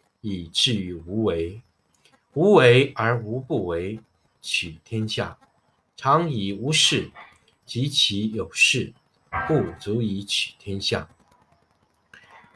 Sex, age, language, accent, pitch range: male, 50-69, Chinese, native, 105-145 Hz